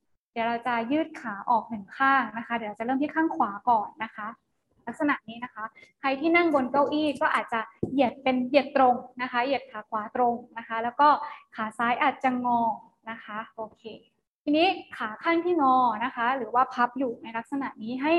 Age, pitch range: 20-39, 230-295 Hz